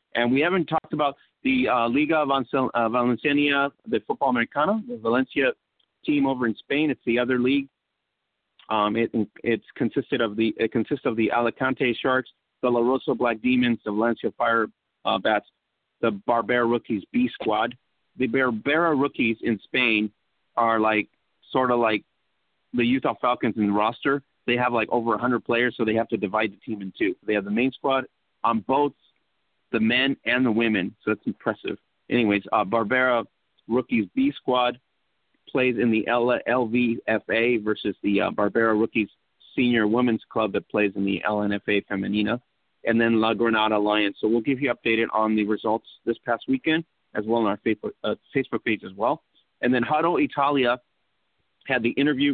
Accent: American